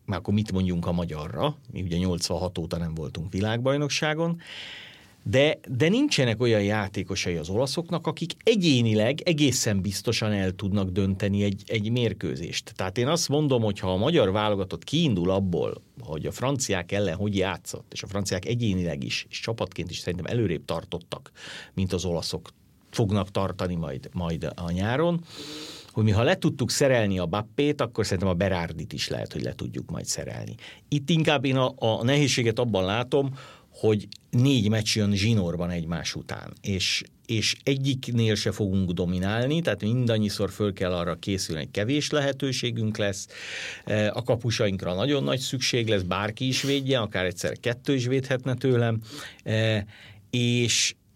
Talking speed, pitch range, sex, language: 155 wpm, 95-130 Hz, male, Hungarian